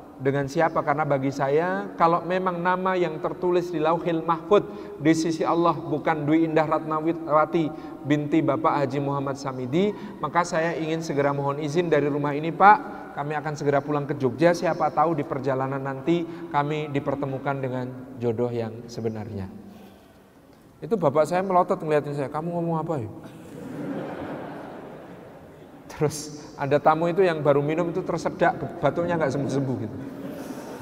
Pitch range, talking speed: 140-170 Hz, 145 wpm